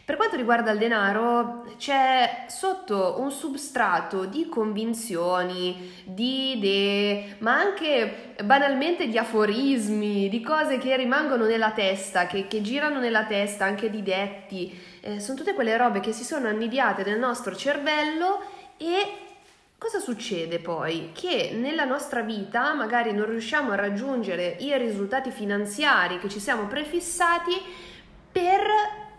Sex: female